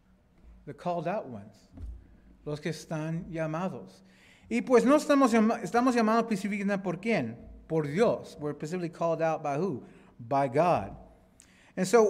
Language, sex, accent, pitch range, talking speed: English, male, American, 125-190 Hz, 140 wpm